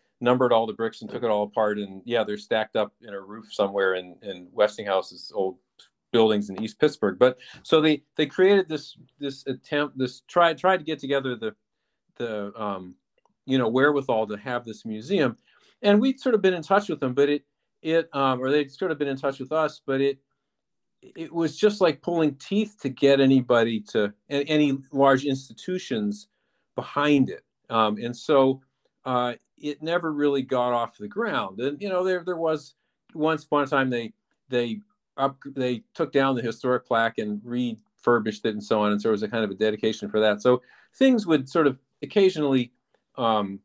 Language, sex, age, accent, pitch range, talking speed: English, male, 50-69, American, 115-155 Hz, 195 wpm